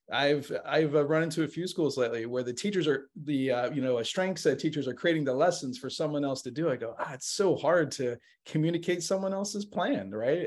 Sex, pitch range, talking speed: male, 130-160 Hz, 235 wpm